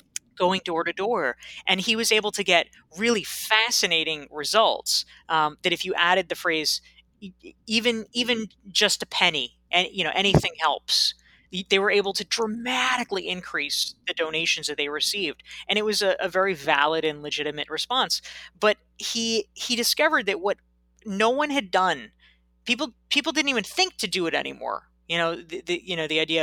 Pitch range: 155-220 Hz